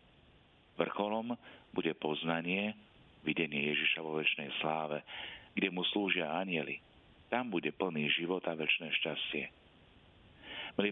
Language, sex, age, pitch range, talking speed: Slovak, male, 50-69, 80-95 Hz, 110 wpm